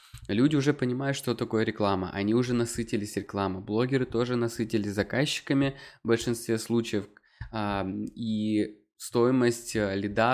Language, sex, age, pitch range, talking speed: Russian, male, 20-39, 105-125 Hz, 115 wpm